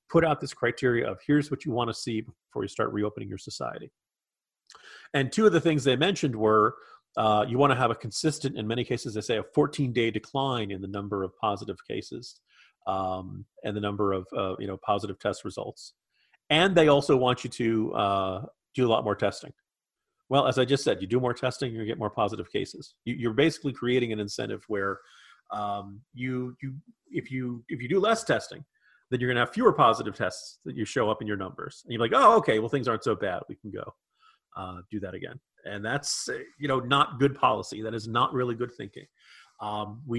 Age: 40-59